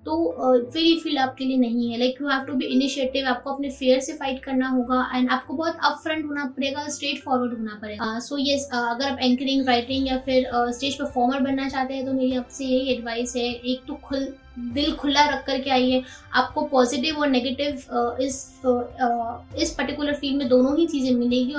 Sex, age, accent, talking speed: female, 20-39, native, 195 wpm